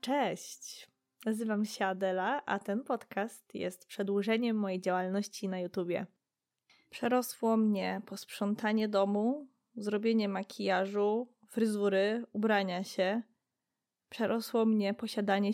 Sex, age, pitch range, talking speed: female, 20-39, 190-225 Hz, 95 wpm